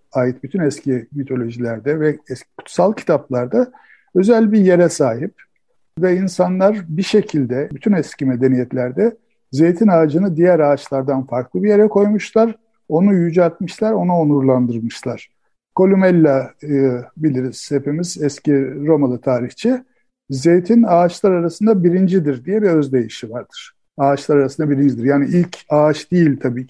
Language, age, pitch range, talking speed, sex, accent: Turkish, 60-79, 140-195 Hz, 120 wpm, male, native